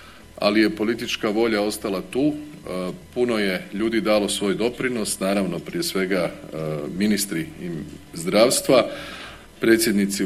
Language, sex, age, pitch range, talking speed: Croatian, male, 40-59, 95-115 Hz, 110 wpm